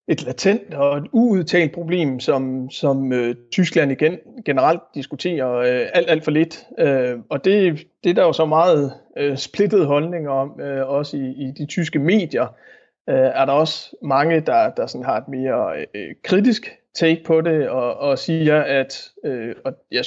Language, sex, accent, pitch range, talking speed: Danish, male, native, 130-170 Hz, 180 wpm